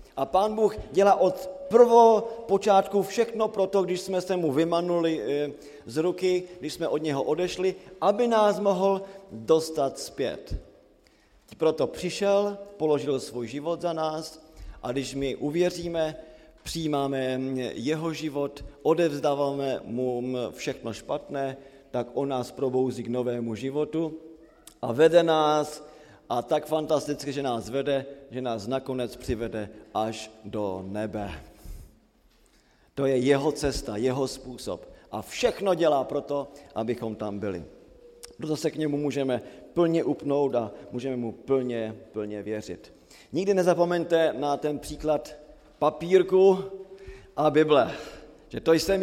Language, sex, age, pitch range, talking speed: Slovak, male, 40-59, 130-170 Hz, 125 wpm